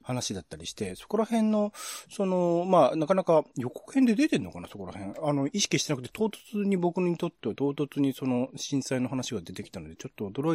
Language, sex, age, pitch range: Japanese, male, 40-59, 100-160 Hz